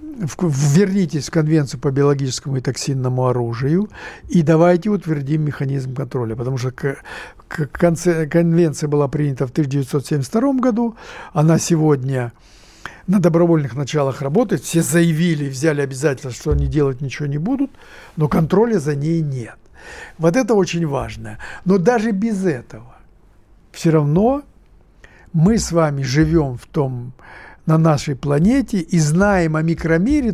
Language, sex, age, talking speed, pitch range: Russian, male, 60-79, 130 wpm, 140-185 Hz